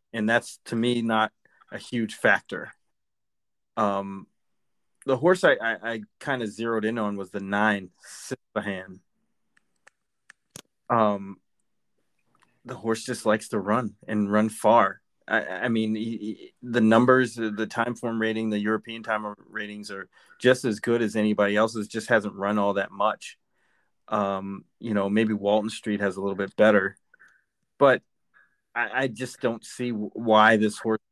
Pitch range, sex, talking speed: 100-115 Hz, male, 155 wpm